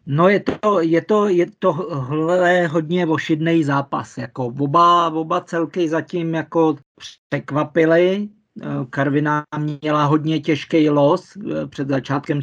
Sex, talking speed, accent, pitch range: male, 115 wpm, native, 140-155 Hz